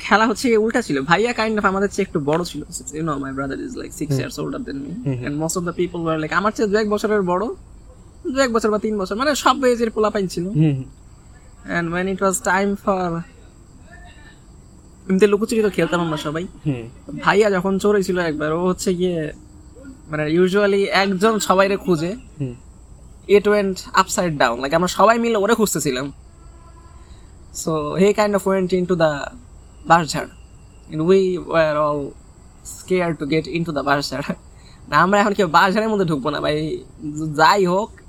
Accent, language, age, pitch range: native, Bengali, 20-39, 150-200 Hz